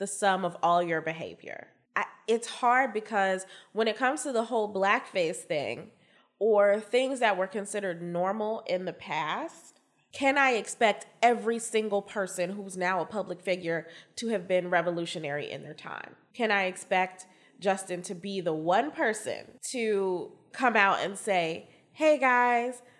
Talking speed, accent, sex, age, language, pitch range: 160 wpm, American, female, 20-39, English, 175-215 Hz